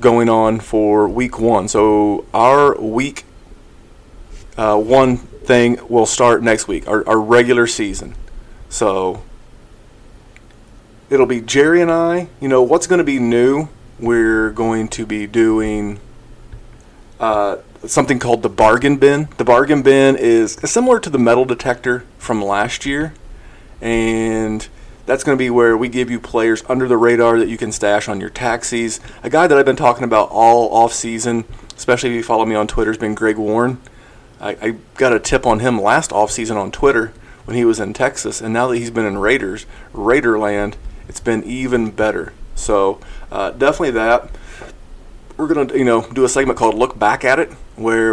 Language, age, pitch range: English, 30-49, 110-125 Hz